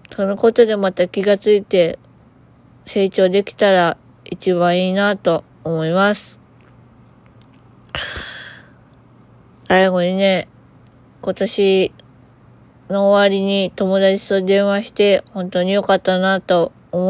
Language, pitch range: Japanese, 175-205 Hz